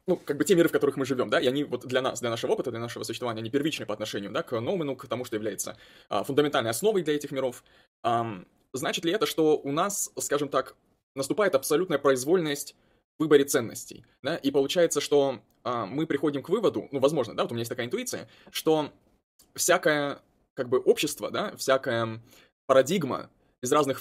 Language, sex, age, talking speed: Russian, male, 20-39, 205 wpm